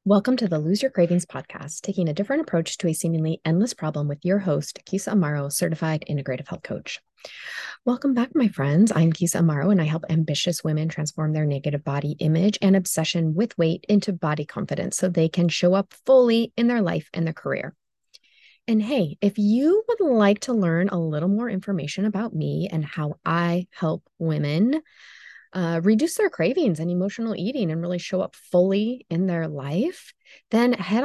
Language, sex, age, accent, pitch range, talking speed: English, female, 20-39, American, 165-215 Hz, 185 wpm